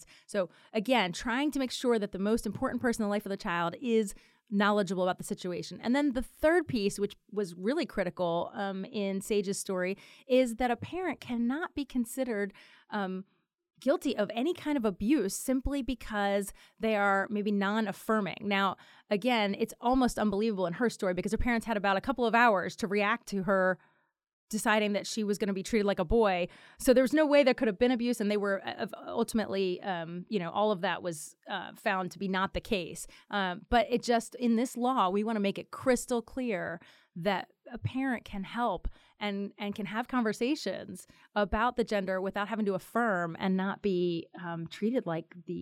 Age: 30-49